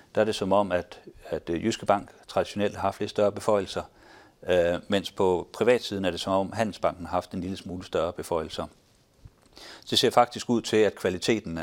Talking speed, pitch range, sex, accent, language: 205 wpm, 95-110 Hz, male, native, Danish